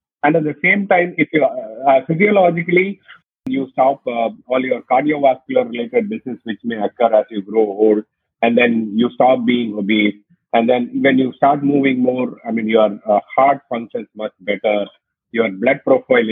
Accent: Indian